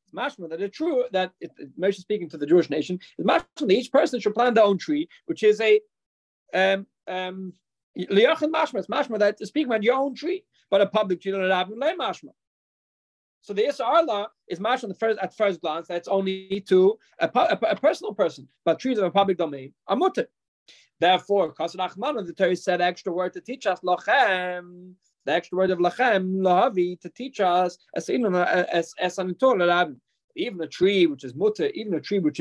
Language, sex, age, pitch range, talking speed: English, male, 30-49, 180-245 Hz, 180 wpm